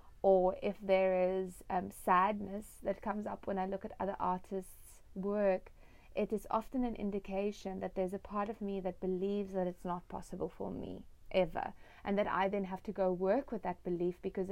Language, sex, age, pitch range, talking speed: English, female, 30-49, 185-215 Hz, 200 wpm